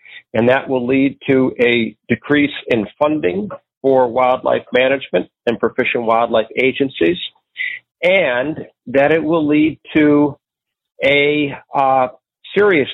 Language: English